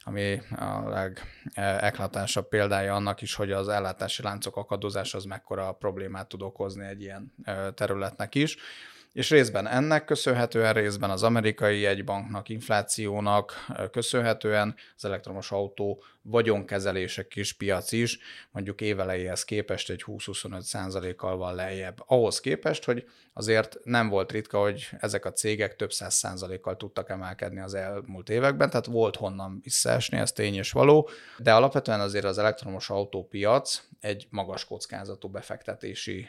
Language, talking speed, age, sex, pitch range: Hungarian, 135 wpm, 30-49, male, 95-115 Hz